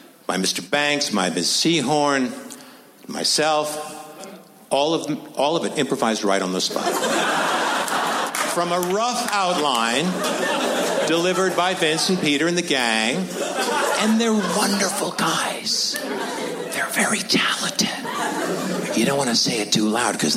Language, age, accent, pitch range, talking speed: English, 60-79, American, 130-175 Hz, 135 wpm